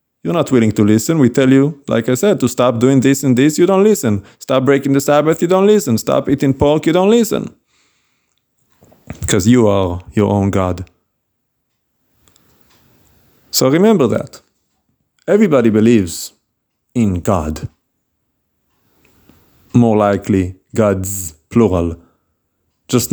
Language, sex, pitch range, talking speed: English, male, 95-125 Hz, 130 wpm